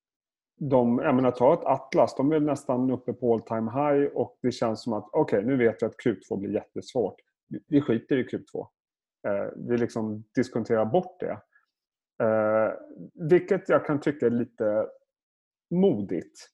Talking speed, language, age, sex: 155 wpm, Swedish, 30-49, male